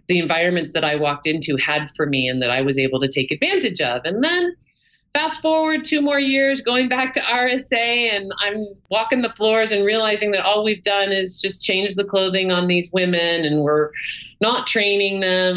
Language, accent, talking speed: English, American, 205 wpm